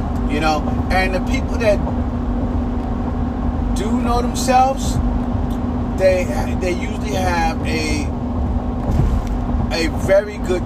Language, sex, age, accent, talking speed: English, male, 30-49, American, 95 wpm